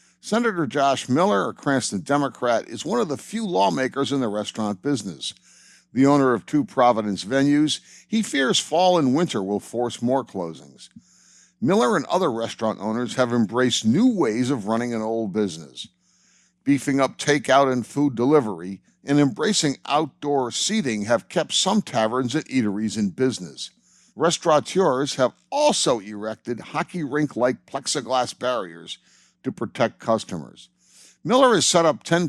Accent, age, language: American, 60-79, English